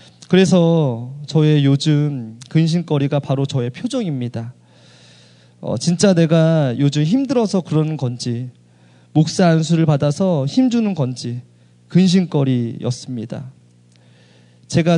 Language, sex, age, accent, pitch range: Korean, male, 20-39, native, 120-165 Hz